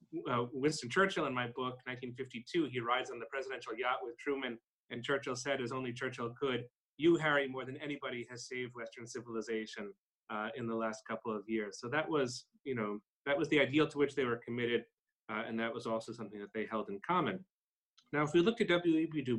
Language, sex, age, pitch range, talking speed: English, male, 30-49, 110-130 Hz, 215 wpm